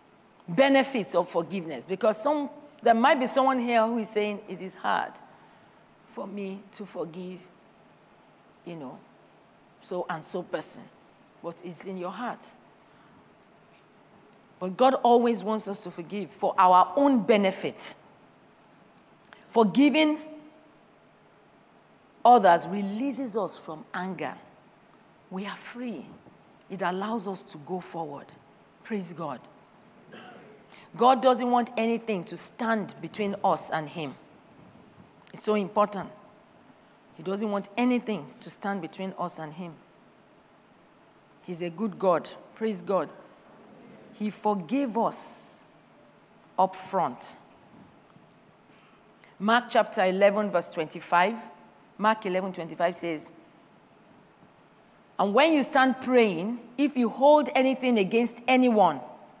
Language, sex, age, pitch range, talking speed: English, female, 40-59, 185-240 Hz, 115 wpm